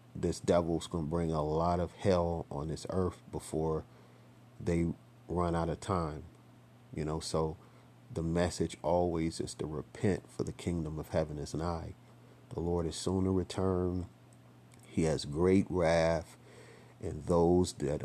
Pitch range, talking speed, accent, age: 75-90 Hz, 155 wpm, American, 40-59